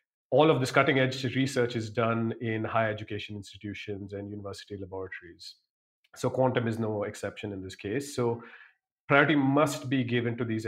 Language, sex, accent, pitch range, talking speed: English, male, Indian, 105-125 Hz, 170 wpm